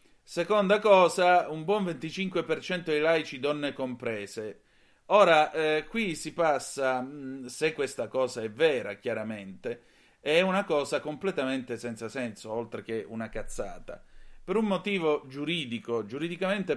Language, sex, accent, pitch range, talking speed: Italian, male, native, 115-160 Hz, 125 wpm